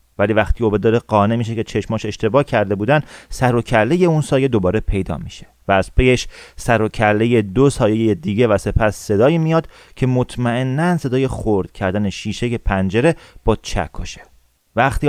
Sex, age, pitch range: male, 30-49, 105-130 Hz